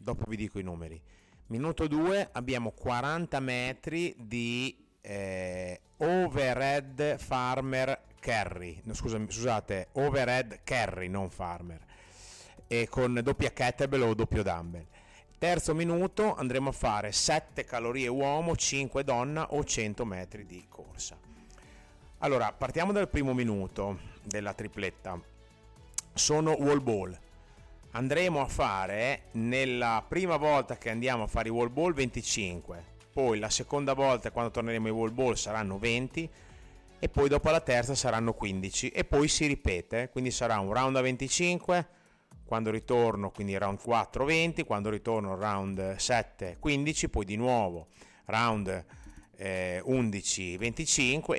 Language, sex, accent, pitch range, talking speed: Italian, male, native, 100-135 Hz, 130 wpm